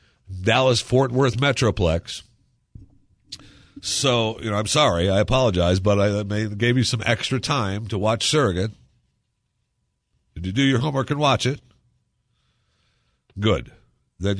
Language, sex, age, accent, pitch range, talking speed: English, male, 50-69, American, 80-115 Hz, 125 wpm